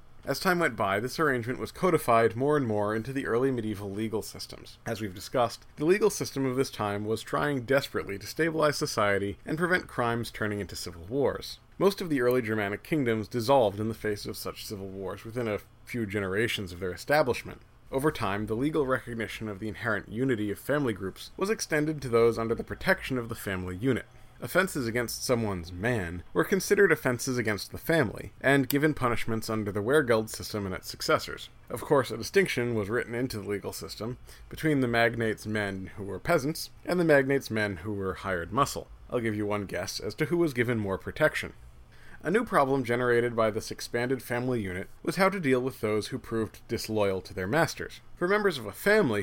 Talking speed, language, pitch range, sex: 200 wpm, English, 105-135 Hz, male